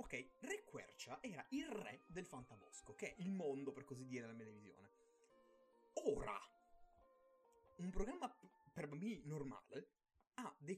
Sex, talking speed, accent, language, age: male, 145 wpm, native, Italian, 20-39